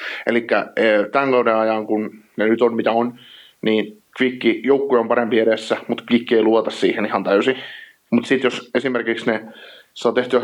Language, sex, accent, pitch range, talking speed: Finnish, male, native, 110-120 Hz, 160 wpm